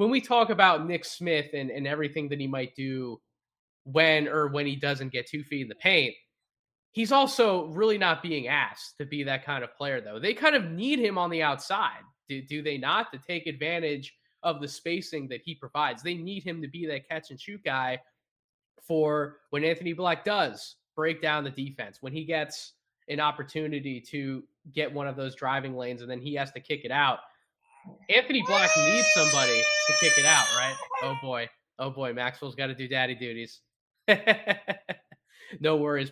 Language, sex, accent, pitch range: English, male, American, 130-170 Hz